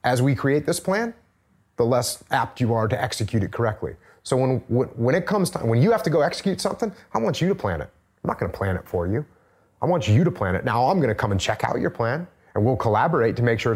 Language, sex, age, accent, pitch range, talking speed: English, male, 30-49, American, 100-150 Hz, 265 wpm